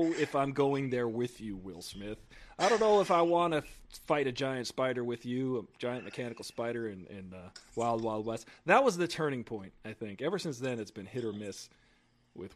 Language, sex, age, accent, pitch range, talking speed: English, male, 40-59, American, 115-170 Hz, 225 wpm